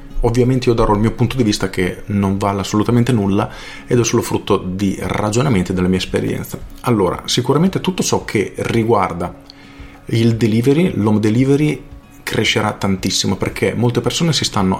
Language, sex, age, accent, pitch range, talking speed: Italian, male, 40-59, native, 95-120 Hz, 160 wpm